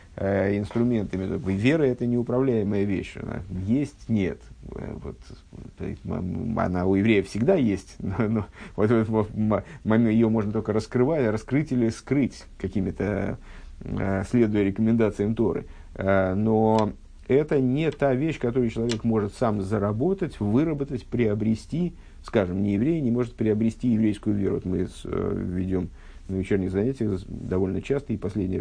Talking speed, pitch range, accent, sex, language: 115 wpm, 100-120 Hz, native, male, Russian